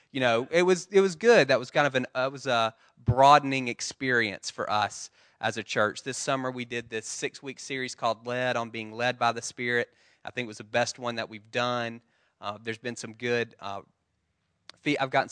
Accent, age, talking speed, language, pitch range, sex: American, 20-39, 220 wpm, English, 115-130 Hz, male